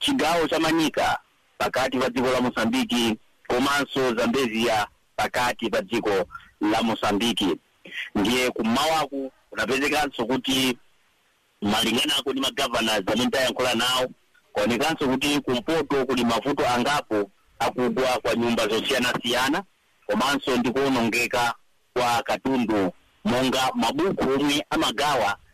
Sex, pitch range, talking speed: male, 125-165 Hz, 95 wpm